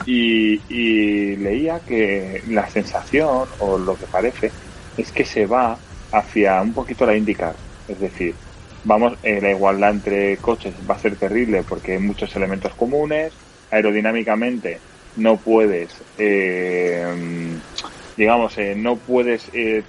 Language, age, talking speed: Spanish, 30-49, 135 wpm